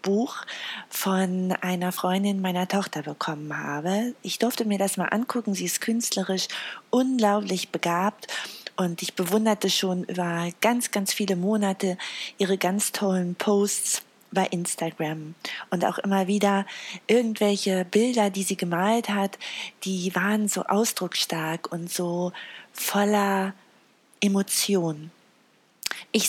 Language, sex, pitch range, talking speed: German, female, 180-210 Hz, 120 wpm